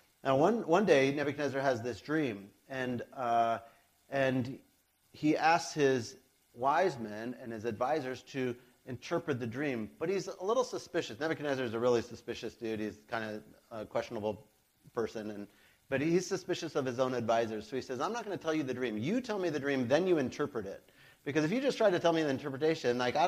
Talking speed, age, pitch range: 205 wpm, 40-59, 125-170 Hz